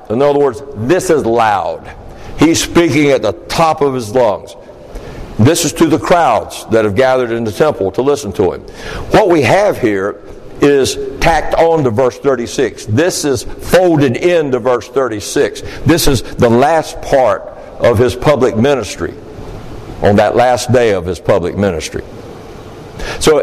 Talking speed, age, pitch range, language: 160 wpm, 60-79, 120-170 Hz, English